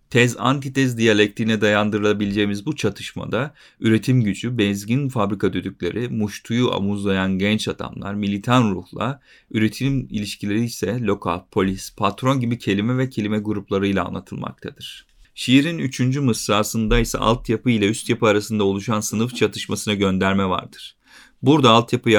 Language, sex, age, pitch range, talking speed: Turkish, male, 40-59, 100-115 Hz, 120 wpm